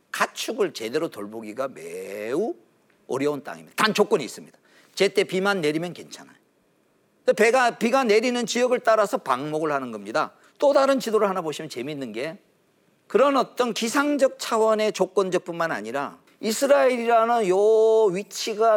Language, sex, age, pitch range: Korean, male, 40-59, 190-270 Hz